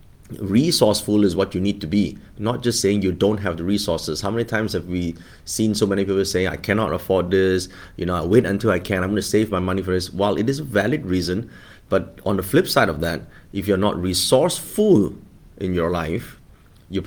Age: 30-49